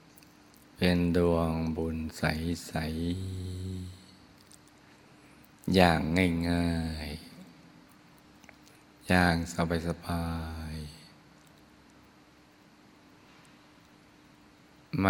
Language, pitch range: Thai, 80-90 Hz